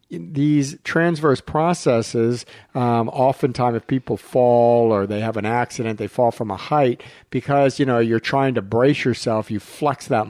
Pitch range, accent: 110-135 Hz, American